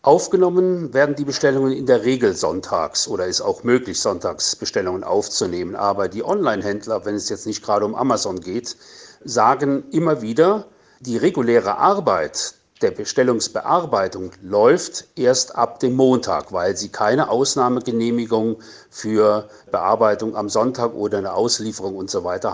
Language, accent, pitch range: German, German, 110-145 Hz